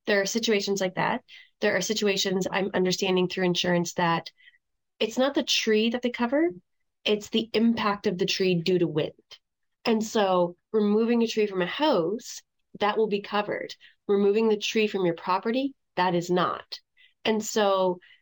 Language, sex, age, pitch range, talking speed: English, female, 20-39, 180-215 Hz, 170 wpm